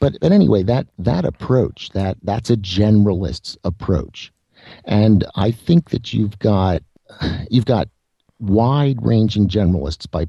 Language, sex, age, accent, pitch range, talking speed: English, male, 50-69, American, 95-115 Hz, 135 wpm